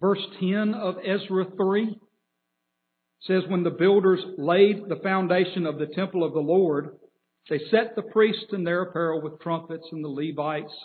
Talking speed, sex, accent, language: 165 wpm, male, American, English